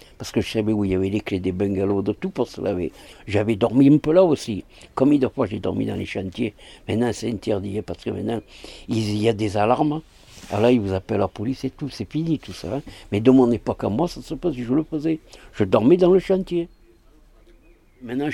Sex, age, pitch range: male, 60-79, 100-130 Hz